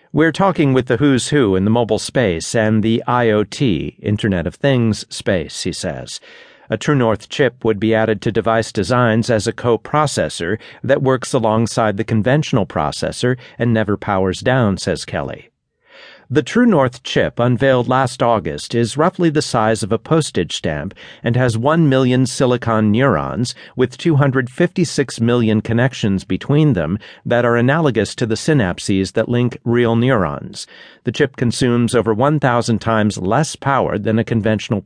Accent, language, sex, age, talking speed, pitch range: American, English, male, 50-69, 155 wpm, 110-135 Hz